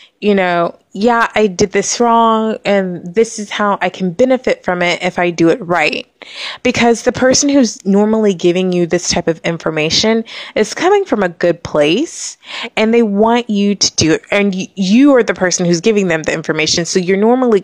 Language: English